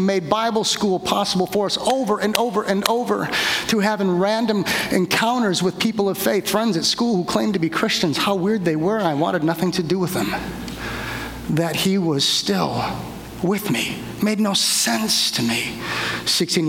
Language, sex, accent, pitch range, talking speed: English, male, American, 135-180 Hz, 185 wpm